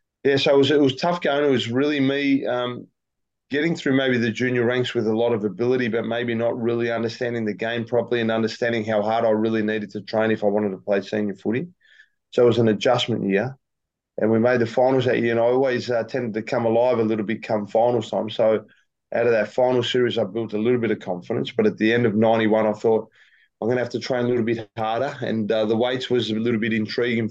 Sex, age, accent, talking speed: male, 20-39, Australian, 250 wpm